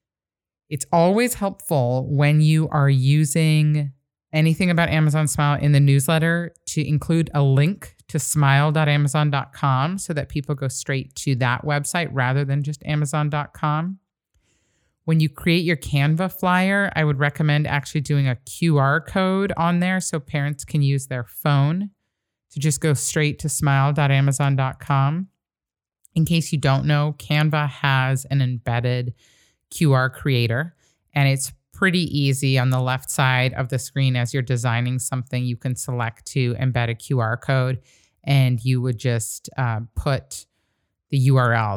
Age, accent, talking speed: 30-49, American, 150 wpm